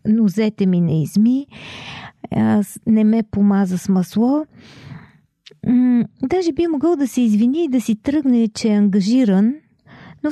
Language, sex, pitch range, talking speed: Bulgarian, female, 200-265 Hz, 140 wpm